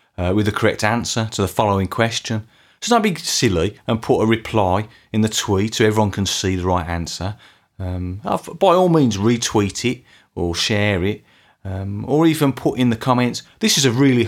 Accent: British